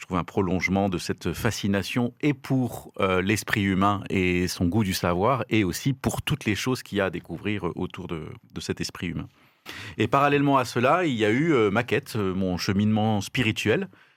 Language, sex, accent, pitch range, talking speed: French, male, French, 100-135 Hz, 200 wpm